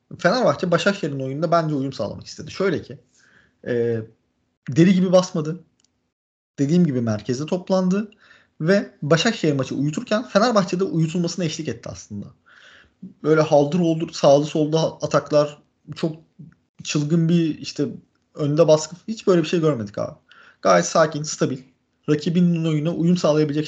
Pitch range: 130-175 Hz